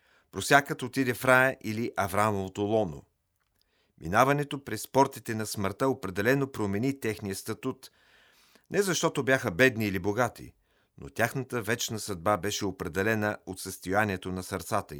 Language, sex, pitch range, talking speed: Bulgarian, male, 100-130 Hz, 130 wpm